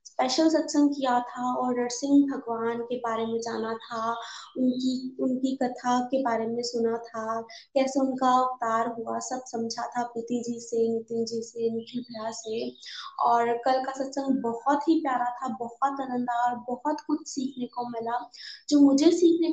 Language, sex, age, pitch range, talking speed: Hindi, female, 20-39, 235-285 Hz, 165 wpm